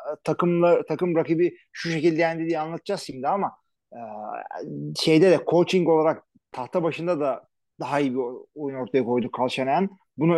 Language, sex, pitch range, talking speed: Turkish, male, 145-200 Hz, 150 wpm